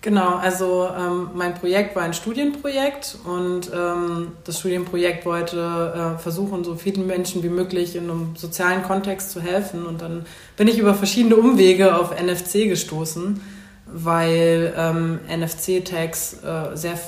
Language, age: German, 20-39